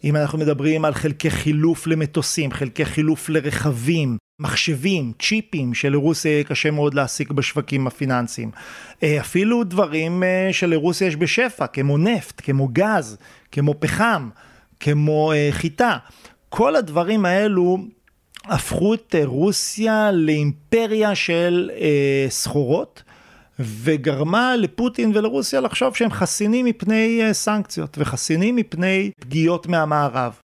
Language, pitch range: Hebrew, 140-190 Hz